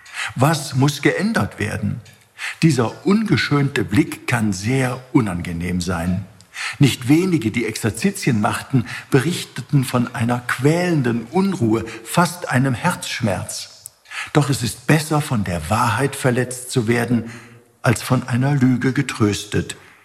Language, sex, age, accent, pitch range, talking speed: German, male, 50-69, German, 105-135 Hz, 115 wpm